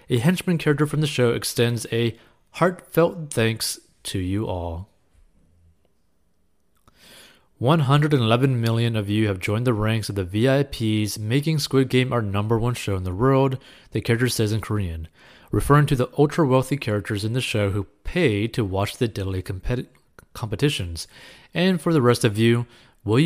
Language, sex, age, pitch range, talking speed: English, male, 30-49, 100-135 Hz, 155 wpm